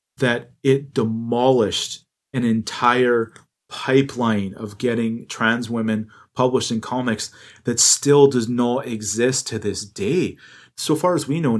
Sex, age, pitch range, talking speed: male, 30-49, 105-125 Hz, 135 wpm